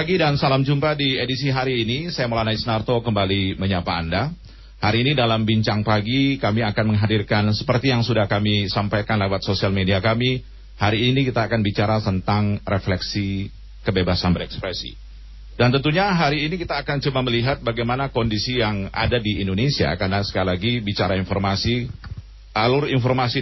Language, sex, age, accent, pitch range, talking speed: Indonesian, male, 40-59, native, 100-130 Hz, 155 wpm